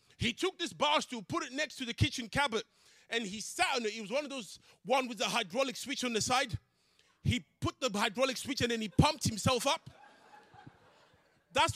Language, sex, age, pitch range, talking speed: English, male, 20-39, 180-280 Hz, 215 wpm